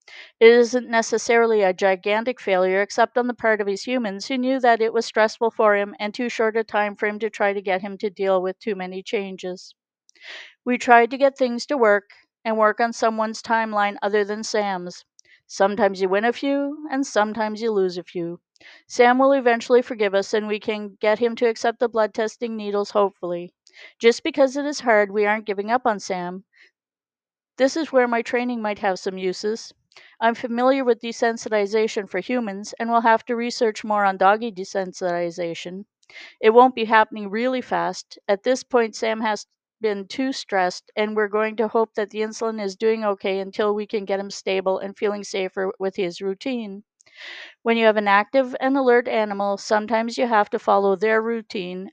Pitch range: 200-235 Hz